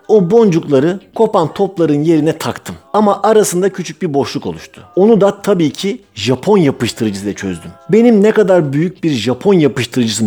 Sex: male